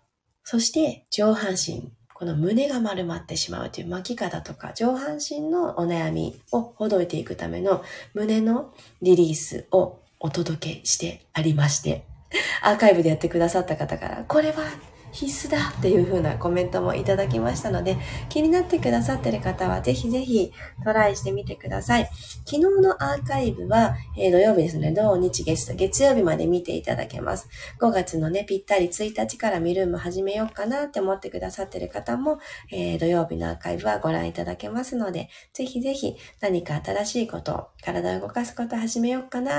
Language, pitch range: Japanese, 165-255 Hz